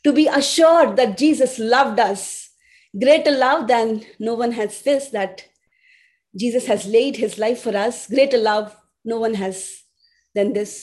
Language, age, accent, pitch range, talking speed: English, 30-49, Indian, 225-295 Hz, 160 wpm